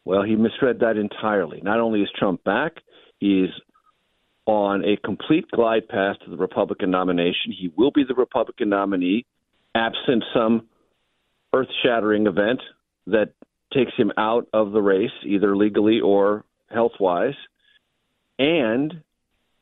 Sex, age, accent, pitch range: male, 50-69, American, 105-135 Hz